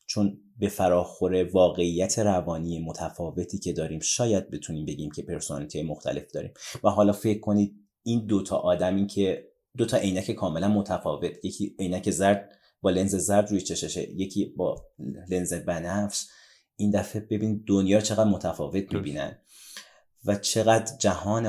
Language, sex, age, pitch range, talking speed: Persian, male, 30-49, 90-105 Hz, 140 wpm